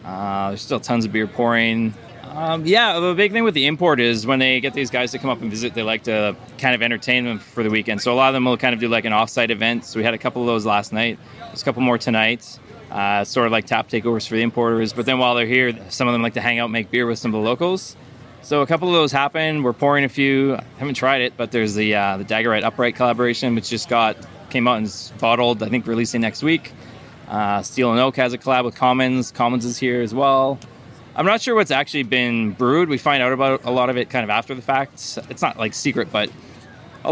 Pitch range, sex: 110-130 Hz, male